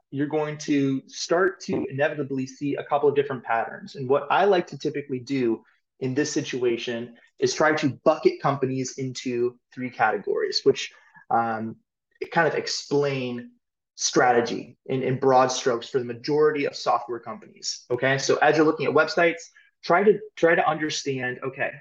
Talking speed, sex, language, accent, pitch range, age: 160 wpm, male, English, American, 130-165 Hz, 20-39